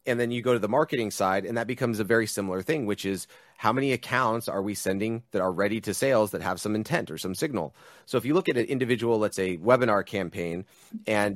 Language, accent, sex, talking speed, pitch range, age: English, American, male, 250 wpm, 95-120 Hz, 30-49